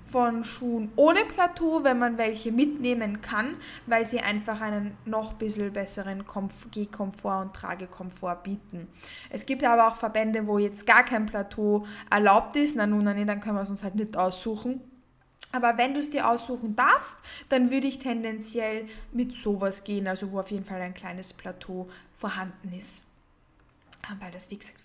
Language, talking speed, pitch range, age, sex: German, 170 wpm, 200-260 Hz, 20-39, female